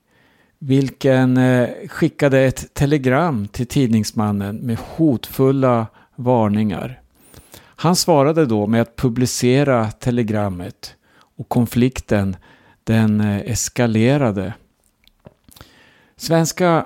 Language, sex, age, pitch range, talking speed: Swedish, male, 60-79, 115-140 Hz, 75 wpm